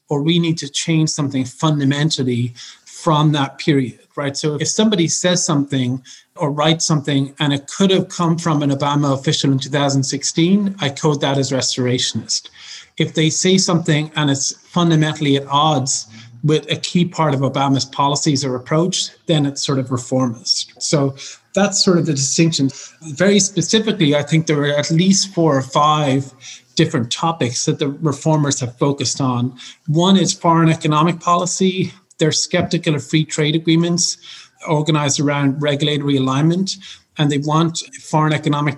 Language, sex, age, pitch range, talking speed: English, male, 30-49, 140-165 Hz, 160 wpm